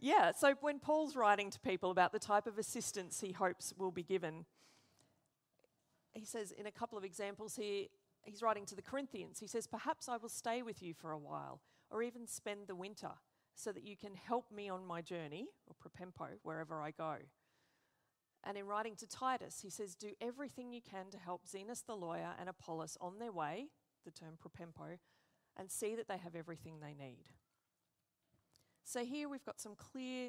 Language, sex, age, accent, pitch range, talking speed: English, female, 40-59, Australian, 165-220 Hz, 195 wpm